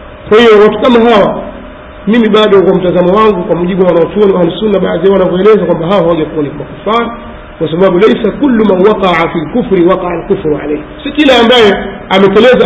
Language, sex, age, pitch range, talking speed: Swahili, male, 50-69, 185-240 Hz, 175 wpm